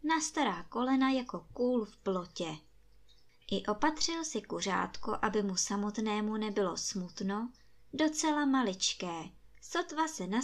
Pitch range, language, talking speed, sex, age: 180-255 Hz, Czech, 120 wpm, male, 20-39